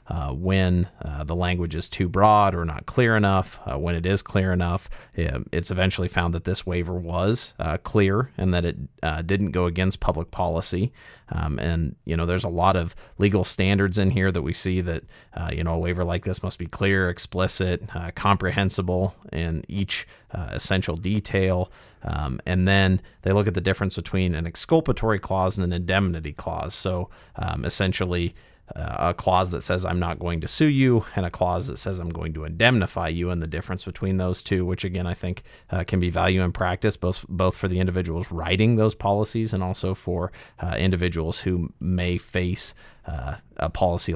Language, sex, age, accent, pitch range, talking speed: English, male, 30-49, American, 85-100 Hz, 195 wpm